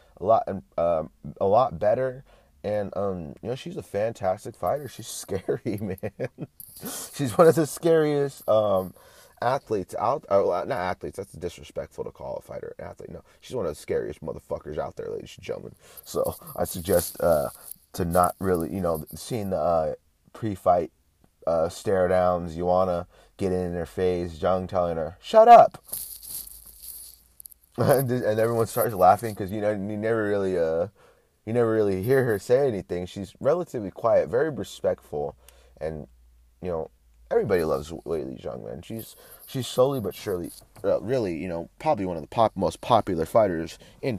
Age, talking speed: 30-49, 170 wpm